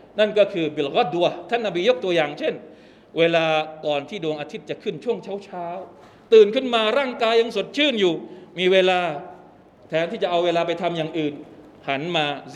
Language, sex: Thai, male